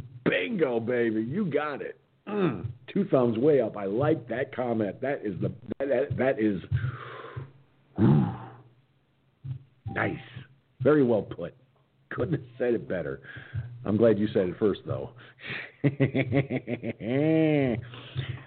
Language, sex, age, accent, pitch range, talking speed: English, male, 50-69, American, 115-135 Hz, 115 wpm